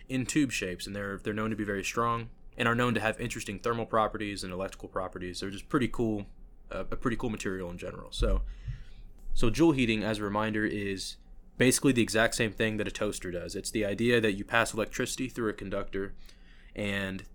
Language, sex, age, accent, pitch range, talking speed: English, male, 20-39, American, 95-115 Hz, 210 wpm